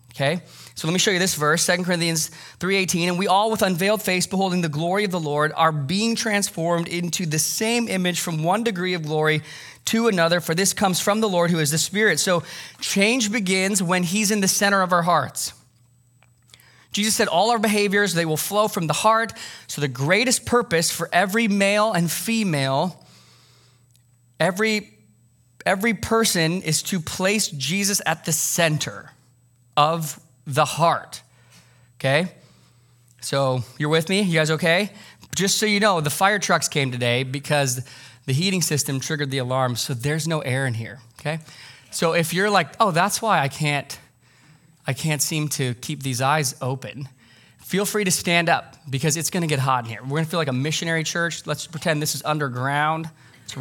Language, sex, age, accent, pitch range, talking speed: English, male, 20-39, American, 140-185 Hz, 180 wpm